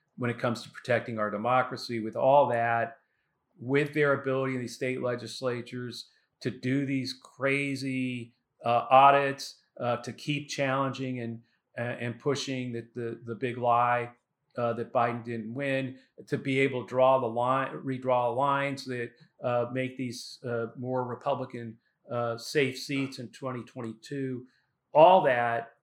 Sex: male